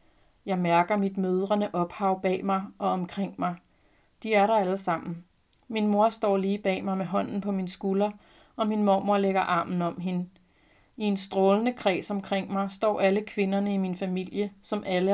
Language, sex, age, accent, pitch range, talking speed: Danish, female, 30-49, native, 180-200 Hz, 185 wpm